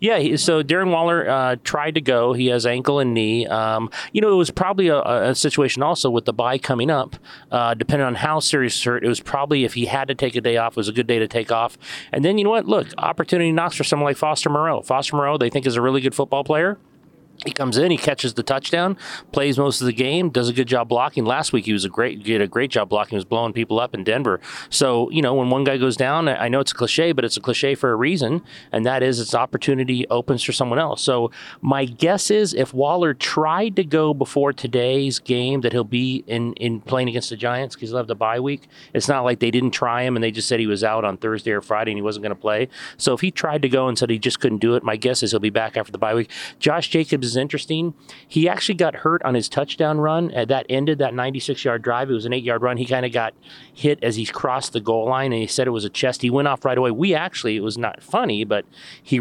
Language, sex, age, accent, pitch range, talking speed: English, male, 30-49, American, 120-150 Hz, 275 wpm